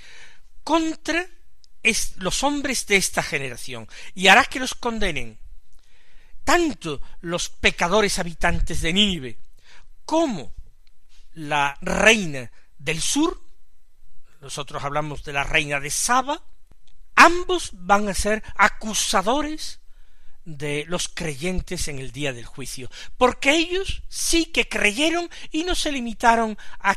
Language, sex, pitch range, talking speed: Spanish, male, 150-250 Hz, 120 wpm